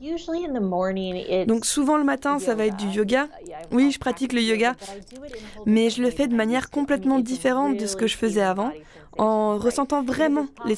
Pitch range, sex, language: 200-255 Hz, female, French